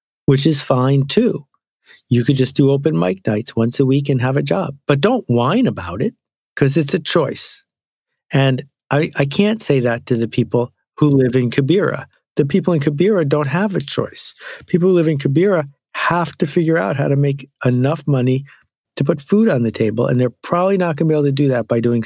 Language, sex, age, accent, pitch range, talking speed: English, male, 50-69, American, 120-150 Hz, 220 wpm